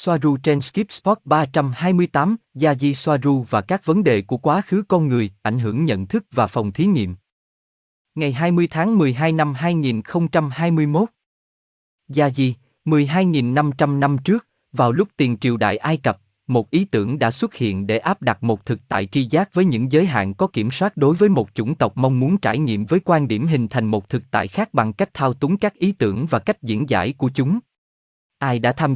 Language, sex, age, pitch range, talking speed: Vietnamese, male, 20-39, 110-165 Hz, 205 wpm